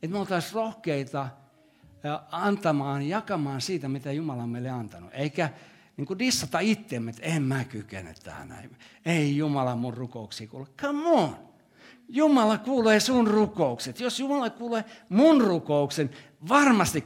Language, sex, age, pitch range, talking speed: Finnish, male, 60-79, 115-180 Hz, 135 wpm